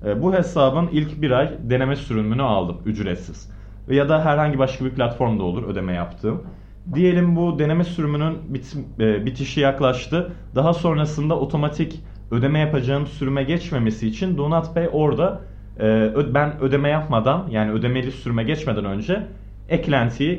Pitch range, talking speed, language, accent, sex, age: 110-155 Hz, 135 wpm, Turkish, native, male, 30-49